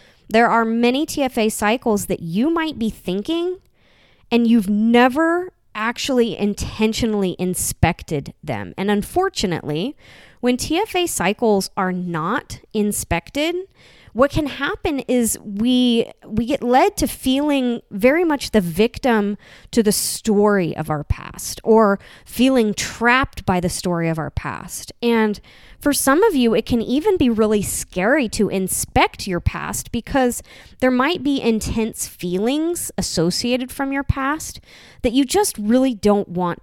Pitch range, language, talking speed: 190-260 Hz, English, 140 wpm